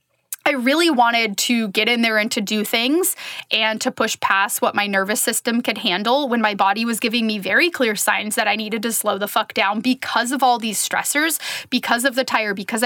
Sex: female